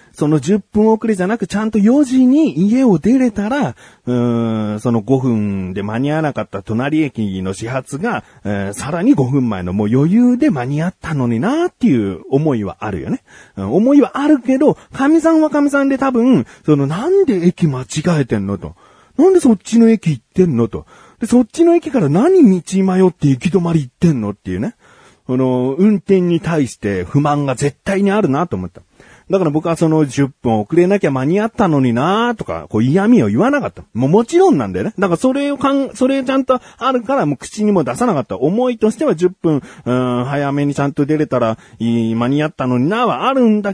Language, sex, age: Japanese, male, 40-59